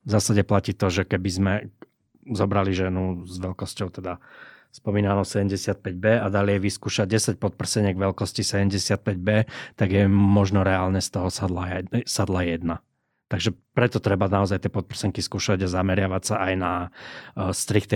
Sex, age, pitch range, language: male, 20-39, 95-110 Hz, Slovak